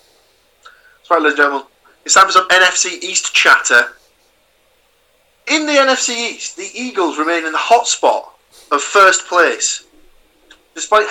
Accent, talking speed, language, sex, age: British, 120 wpm, English, male, 30-49